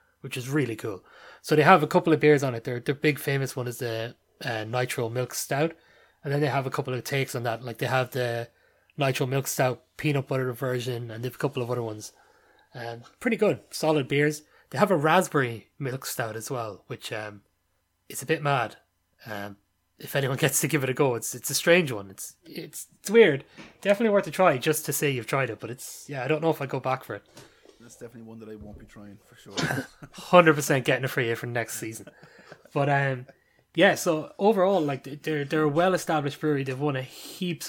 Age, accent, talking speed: 20-39, Irish, 230 wpm